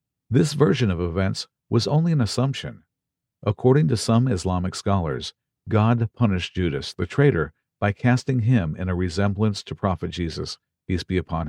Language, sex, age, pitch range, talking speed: English, male, 50-69, 90-130 Hz, 155 wpm